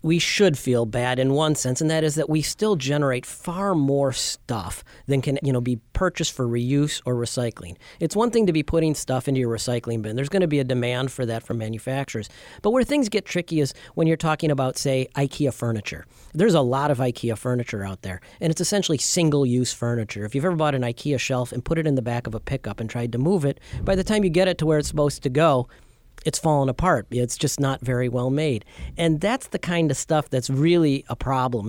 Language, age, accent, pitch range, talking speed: English, 40-59, American, 125-160 Hz, 235 wpm